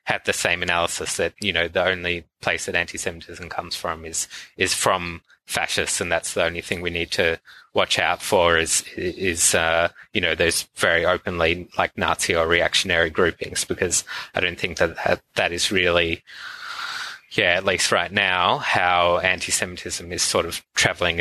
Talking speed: 180 wpm